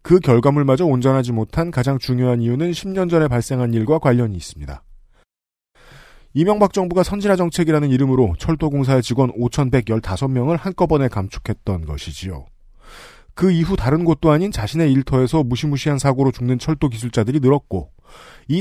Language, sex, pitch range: Korean, male, 115-155 Hz